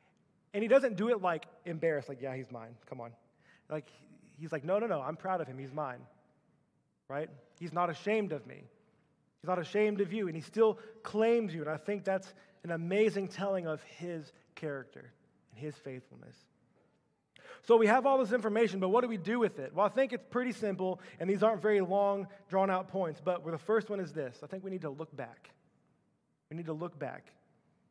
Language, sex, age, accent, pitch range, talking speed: English, male, 20-39, American, 155-215 Hz, 215 wpm